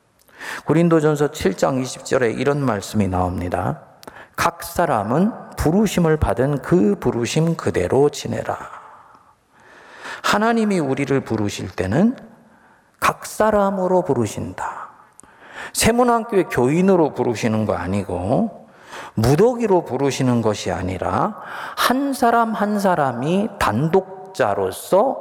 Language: Korean